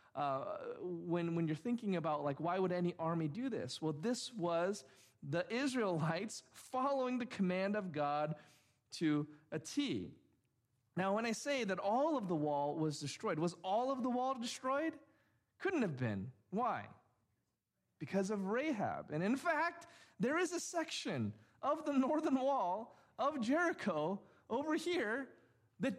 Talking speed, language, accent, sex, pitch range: 150 wpm, English, American, male, 160-250 Hz